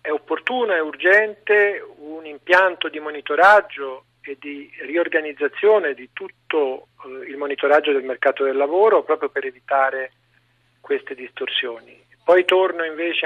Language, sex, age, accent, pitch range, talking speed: Italian, male, 40-59, native, 140-220 Hz, 120 wpm